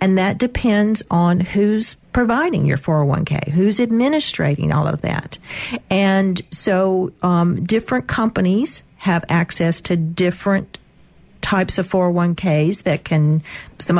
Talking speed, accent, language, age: 120 wpm, American, English, 40-59